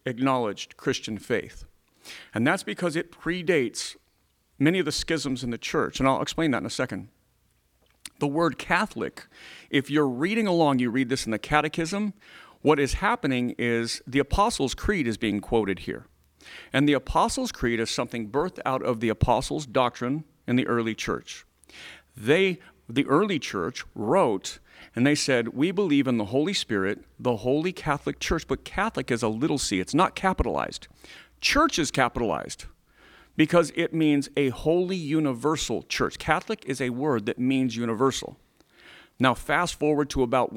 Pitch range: 120-150 Hz